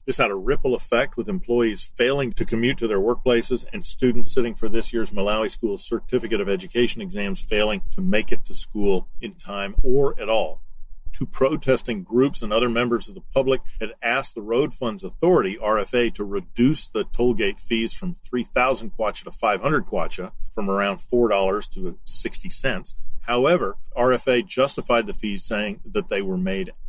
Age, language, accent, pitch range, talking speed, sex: 50-69, English, American, 100-135 Hz, 175 wpm, male